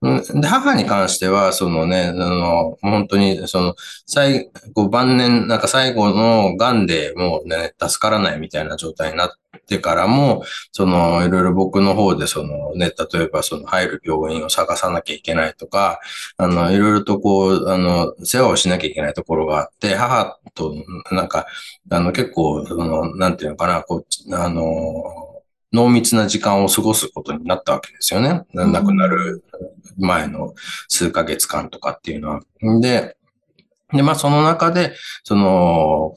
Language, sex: Japanese, male